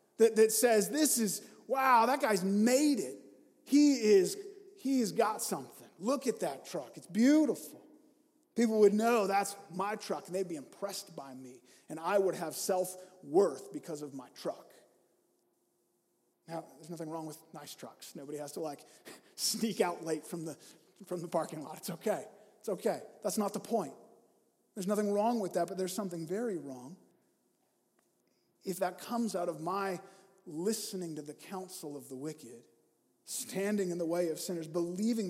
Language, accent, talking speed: English, American, 165 wpm